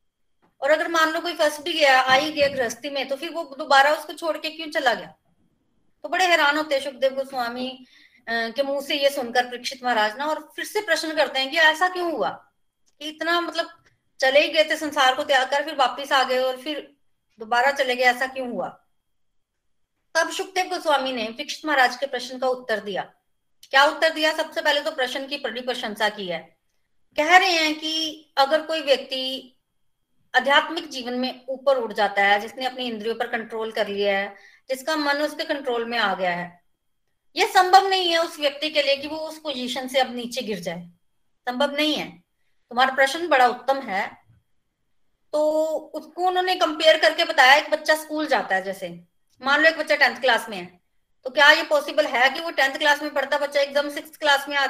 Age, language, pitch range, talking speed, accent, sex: 30-49, Hindi, 255-310 Hz, 165 wpm, native, female